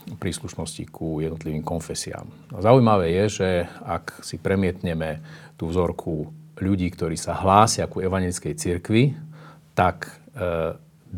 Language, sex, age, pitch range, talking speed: Slovak, male, 40-59, 85-120 Hz, 115 wpm